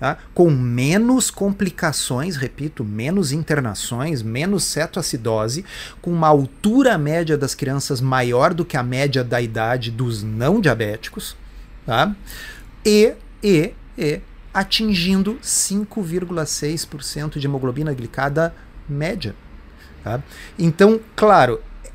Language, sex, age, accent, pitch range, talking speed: Portuguese, male, 40-59, Brazilian, 130-170 Hz, 105 wpm